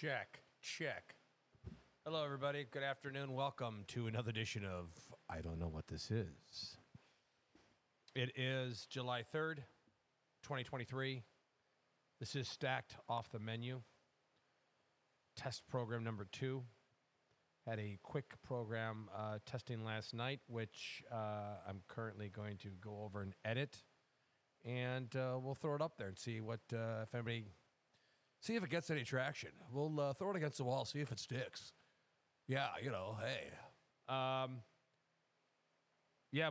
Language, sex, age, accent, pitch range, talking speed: English, male, 40-59, American, 110-135 Hz, 145 wpm